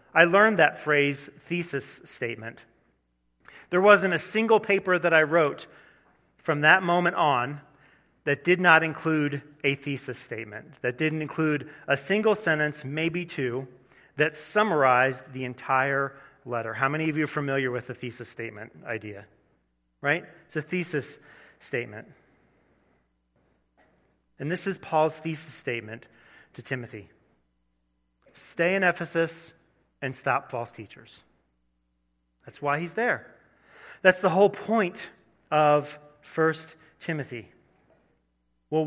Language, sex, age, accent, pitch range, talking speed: English, male, 30-49, American, 125-175 Hz, 125 wpm